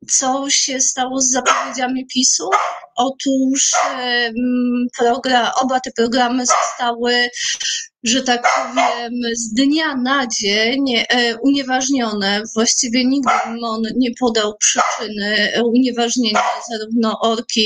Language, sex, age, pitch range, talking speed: Polish, female, 30-49, 220-255 Hz, 95 wpm